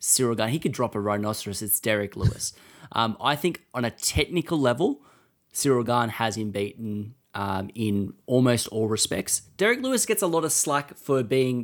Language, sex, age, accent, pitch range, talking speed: English, male, 20-39, Australian, 110-130 Hz, 185 wpm